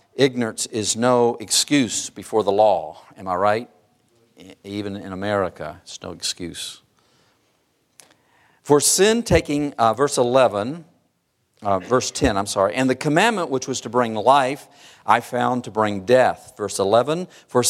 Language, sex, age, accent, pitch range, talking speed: English, male, 50-69, American, 105-150 Hz, 145 wpm